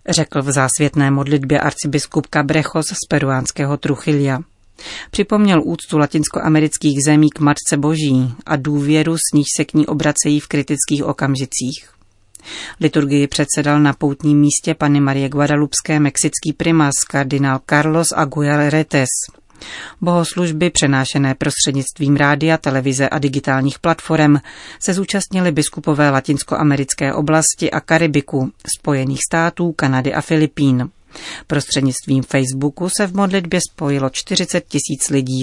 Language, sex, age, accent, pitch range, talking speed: Czech, female, 40-59, native, 140-160 Hz, 120 wpm